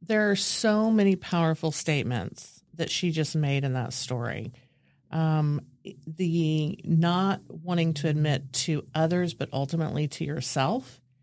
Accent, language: American, English